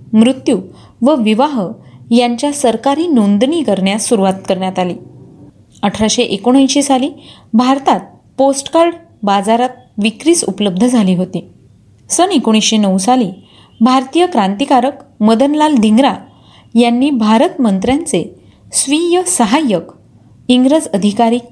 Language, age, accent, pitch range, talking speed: Marathi, 30-49, native, 210-270 Hz, 95 wpm